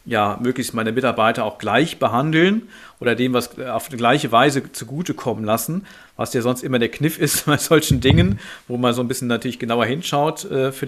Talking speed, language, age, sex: 200 wpm, German, 40-59, male